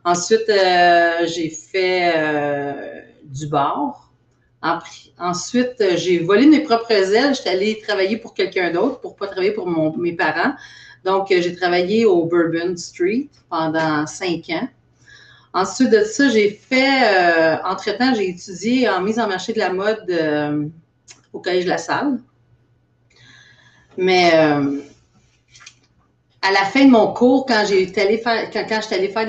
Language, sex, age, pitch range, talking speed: French, female, 40-59, 165-220 Hz, 150 wpm